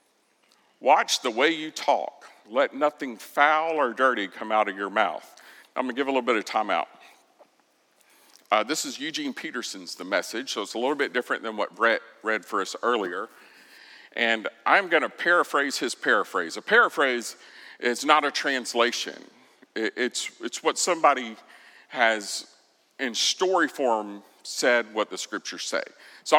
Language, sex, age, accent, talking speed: English, male, 50-69, American, 165 wpm